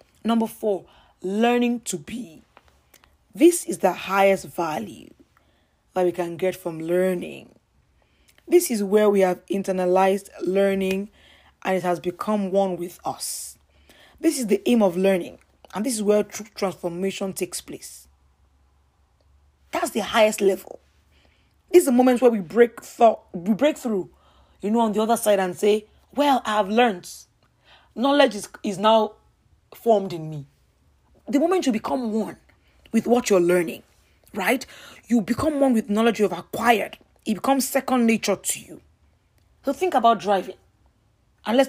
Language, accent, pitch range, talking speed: English, Nigerian, 185-240 Hz, 155 wpm